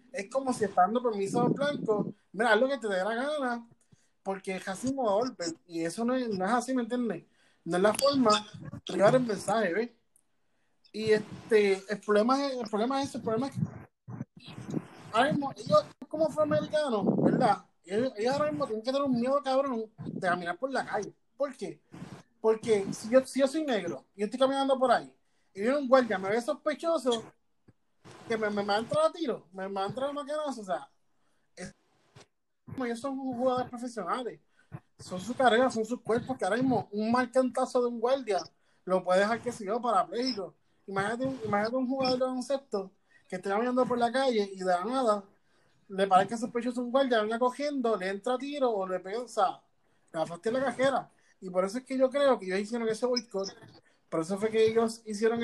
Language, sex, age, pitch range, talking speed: Spanish, male, 30-49, 200-260 Hz, 200 wpm